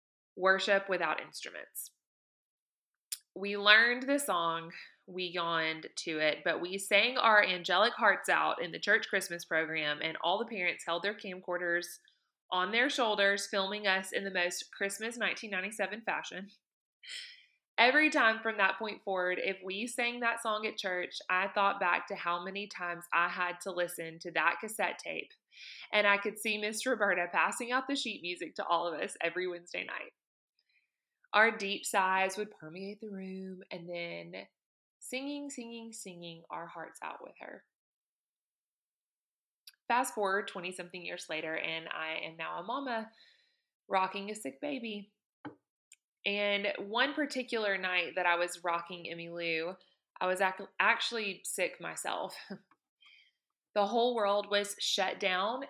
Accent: American